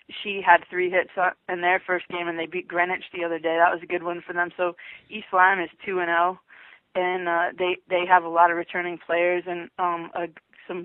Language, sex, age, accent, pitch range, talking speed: English, female, 20-39, American, 170-180 Hz, 240 wpm